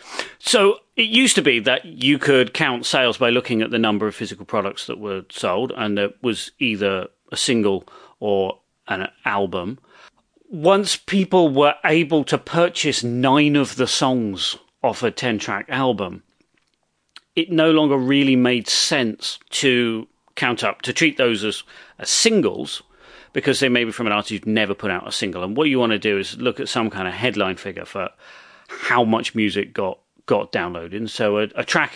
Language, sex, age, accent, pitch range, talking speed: English, male, 40-59, British, 100-135 Hz, 180 wpm